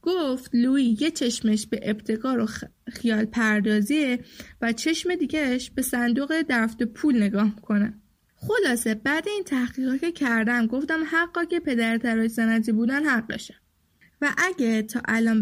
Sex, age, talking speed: female, 10-29, 135 wpm